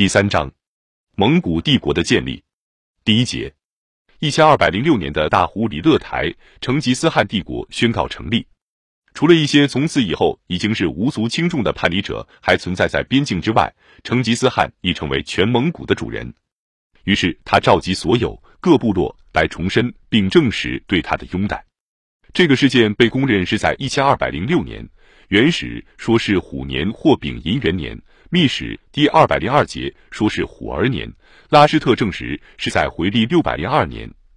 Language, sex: Chinese, male